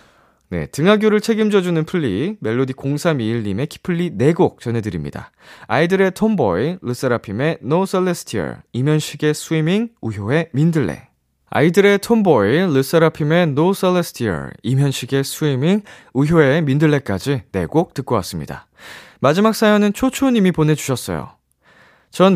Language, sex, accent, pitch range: Korean, male, native, 120-175 Hz